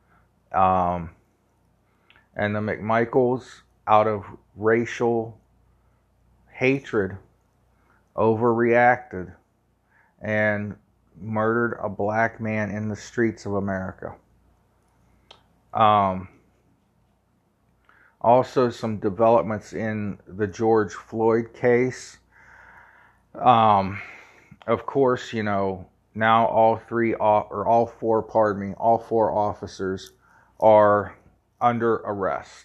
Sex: male